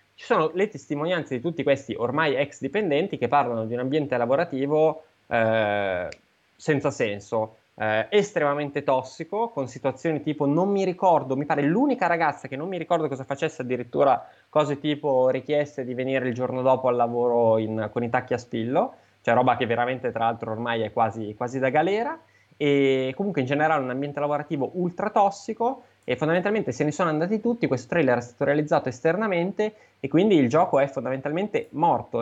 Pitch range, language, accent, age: 120-155 Hz, Italian, native, 20-39